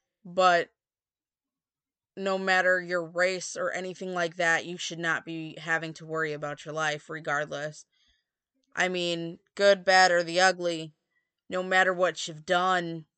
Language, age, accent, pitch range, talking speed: English, 20-39, American, 160-195 Hz, 145 wpm